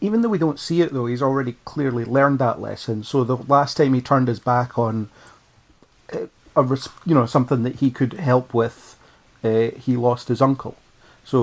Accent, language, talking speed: British, English, 195 wpm